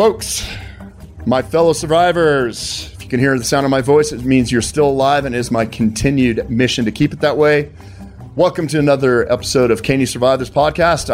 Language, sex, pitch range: English, male, 115-145 Hz